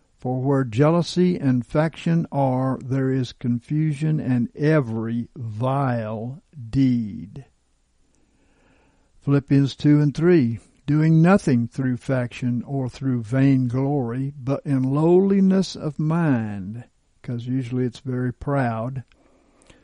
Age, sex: 60-79, male